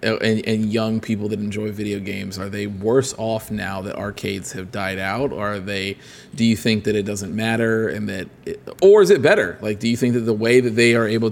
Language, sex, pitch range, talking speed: English, male, 105-130 Hz, 240 wpm